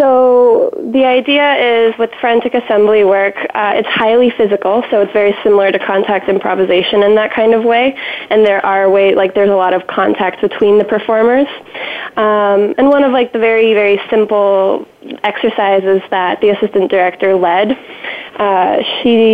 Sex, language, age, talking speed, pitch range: female, English, 20-39, 170 wpm, 195-225 Hz